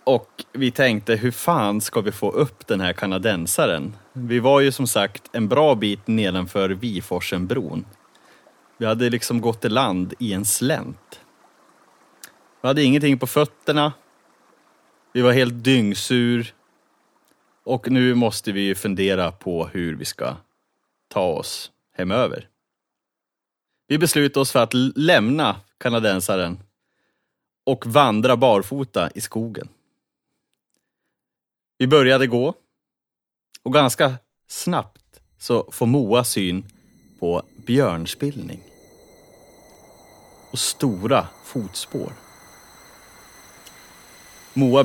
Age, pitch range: 30-49, 95-130 Hz